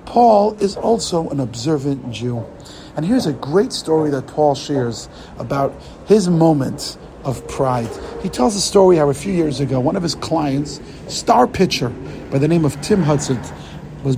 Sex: male